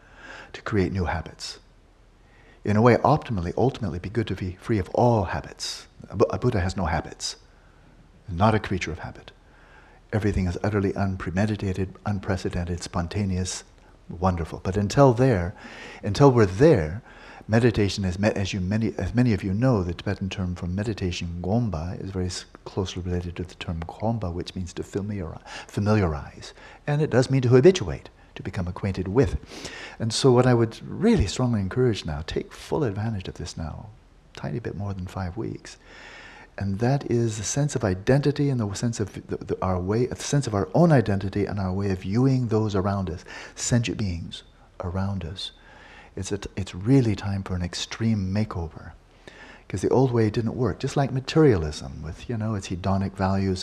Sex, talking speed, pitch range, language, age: male, 175 wpm, 90-115 Hz, English, 60-79